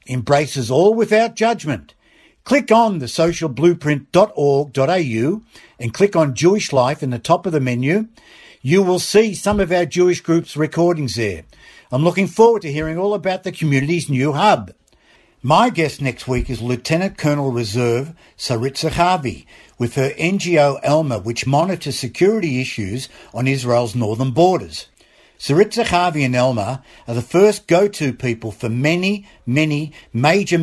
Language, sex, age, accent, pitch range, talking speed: English, male, 60-79, Australian, 125-180 Hz, 145 wpm